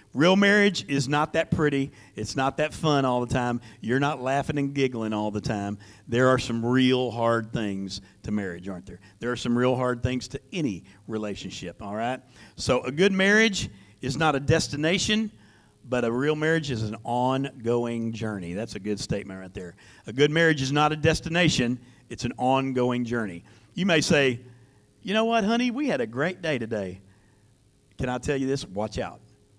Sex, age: male, 50-69